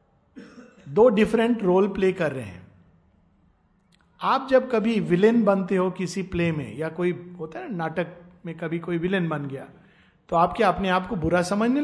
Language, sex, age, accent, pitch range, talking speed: Hindi, male, 50-69, native, 160-230 Hz, 180 wpm